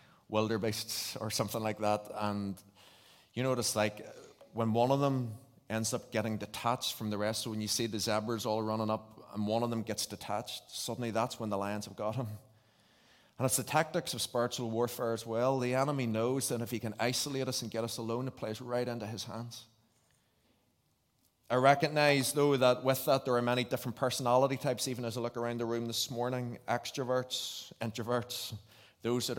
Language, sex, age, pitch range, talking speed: English, male, 30-49, 110-130 Hz, 195 wpm